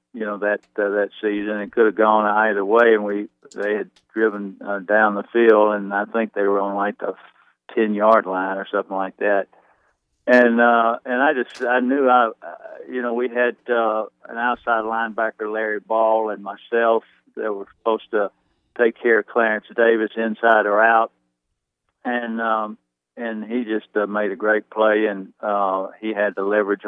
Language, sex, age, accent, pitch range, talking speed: English, male, 60-79, American, 100-115 Hz, 190 wpm